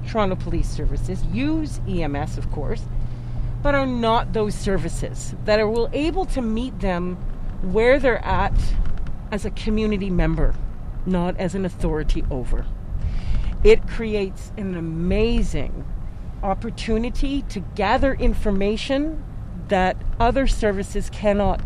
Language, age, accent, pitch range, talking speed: English, 40-59, American, 145-245 Hz, 115 wpm